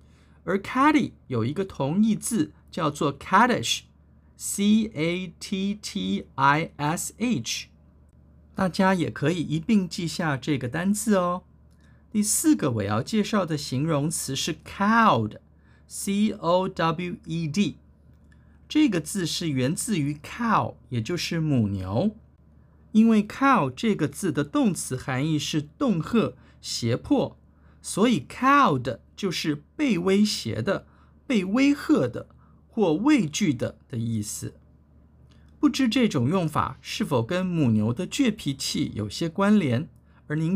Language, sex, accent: Chinese, male, native